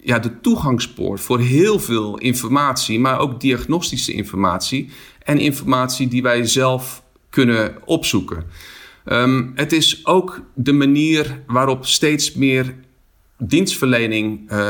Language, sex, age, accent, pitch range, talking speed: Dutch, male, 40-59, Dutch, 105-135 Hz, 105 wpm